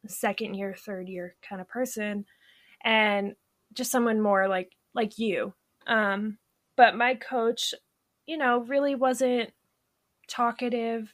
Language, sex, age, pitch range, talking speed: English, female, 20-39, 200-250 Hz, 125 wpm